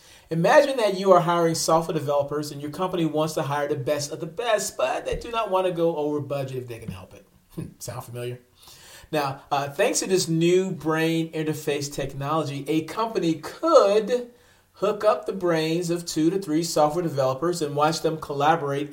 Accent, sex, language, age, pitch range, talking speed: American, male, English, 40-59, 140-180 Hz, 190 wpm